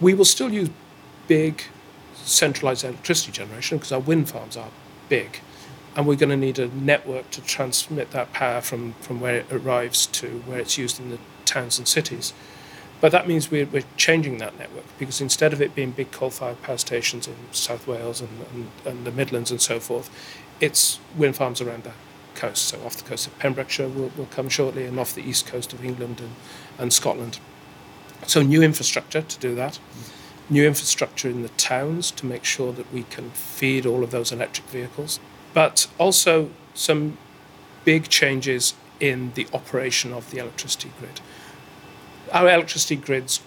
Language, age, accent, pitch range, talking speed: English, 40-59, British, 125-145 Hz, 180 wpm